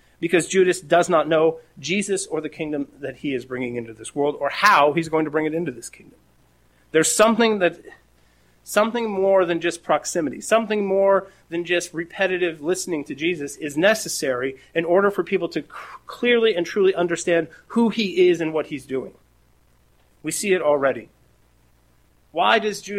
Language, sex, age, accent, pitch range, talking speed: English, male, 30-49, American, 145-190 Hz, 170 wpm